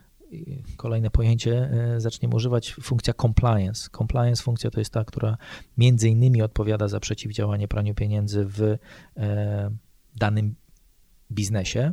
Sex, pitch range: male, 105-120 Hz